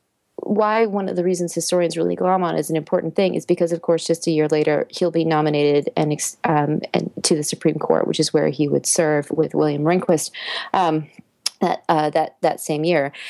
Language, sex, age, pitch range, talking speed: English, female, 30-49, 160-190 Hz, 210 wpm